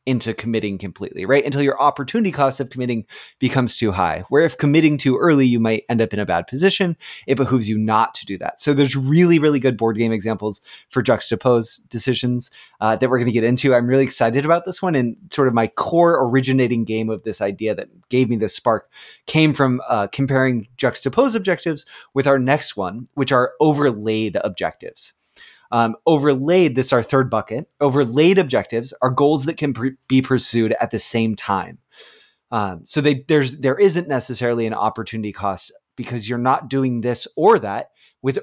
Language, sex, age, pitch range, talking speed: English, male, 20-39, 115-145 Hz, 190 wpm